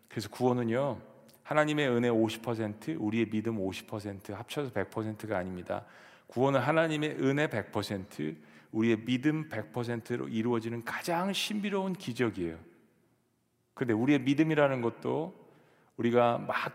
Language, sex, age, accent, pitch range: Korean, male, 40-59, native, 105-130 Hz